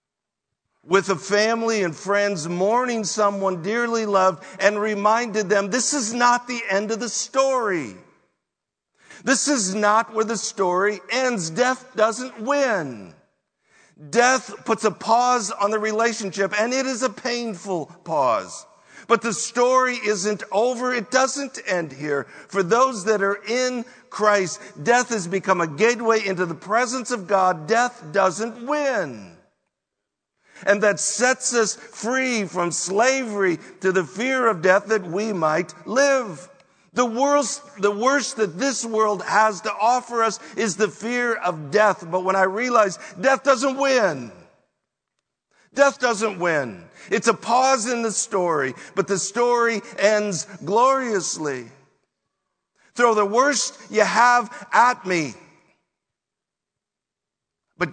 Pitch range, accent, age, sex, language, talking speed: 195-245 Hz, American, 50-69, male, English, 135 wpm